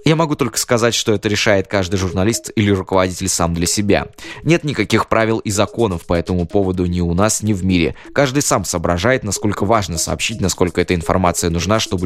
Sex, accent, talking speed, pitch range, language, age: male, native, 195 wpm, 85-110 Hz, Russian, 20-39